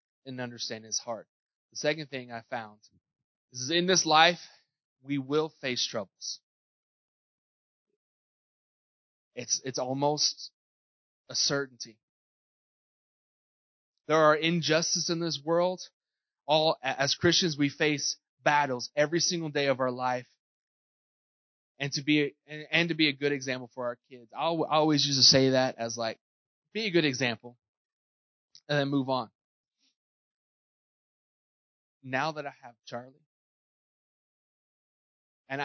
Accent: American